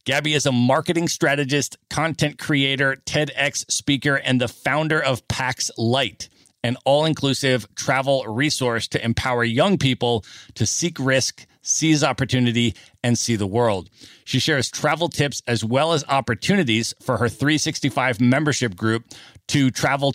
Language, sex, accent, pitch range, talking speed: English, male, American, 115-140 Hz, 140 wpm